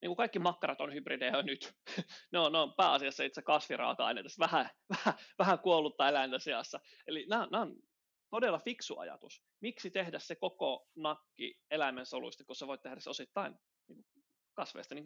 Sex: male